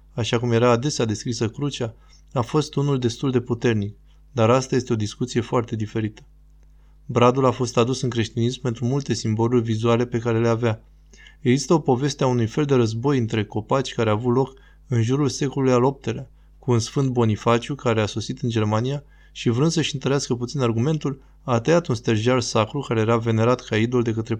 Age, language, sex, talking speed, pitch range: 20-39, Romanian, male, 195 wpm, 110-130 Hz